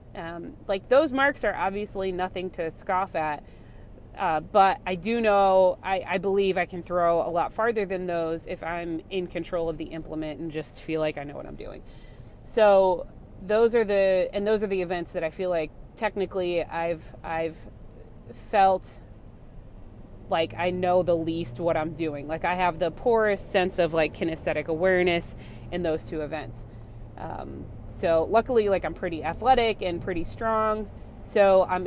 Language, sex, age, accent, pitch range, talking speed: English, female, 30-49, American, 160-185 Hz, 175 wpm